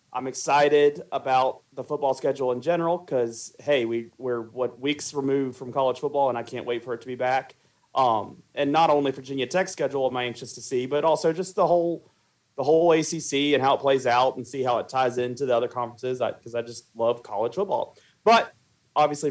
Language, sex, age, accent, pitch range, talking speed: English, male, 30-49, American, 125-155 Hz, 220 wpm